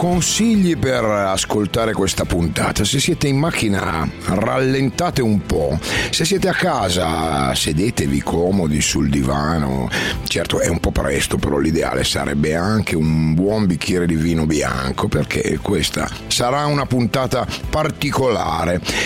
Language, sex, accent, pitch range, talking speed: Italian, male, native, 85-135 Hz, 130 wpm